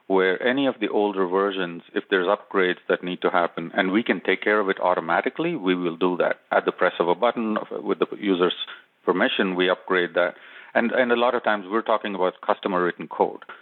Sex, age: male, 40-59